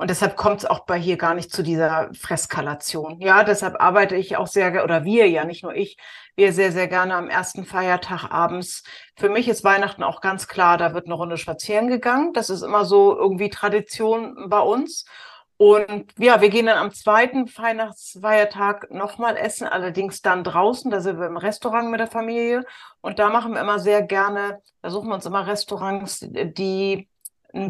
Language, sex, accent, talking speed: German, female, German, 195 wpm